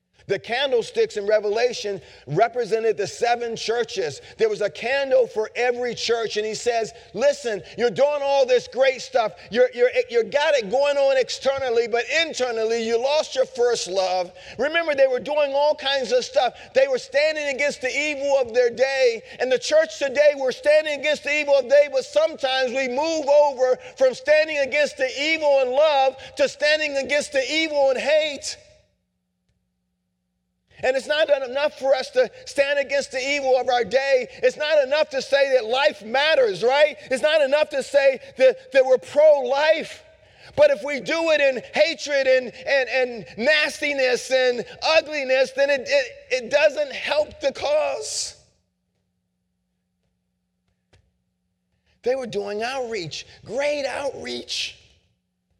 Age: 40-59